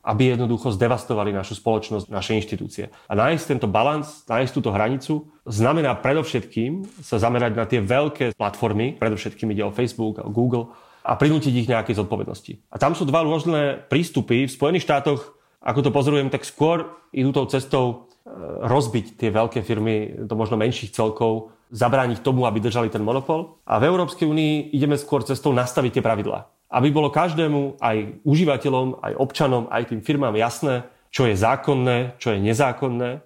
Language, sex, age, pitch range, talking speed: Slovak, male, 30-49, 110-140 Hz, 165 wpm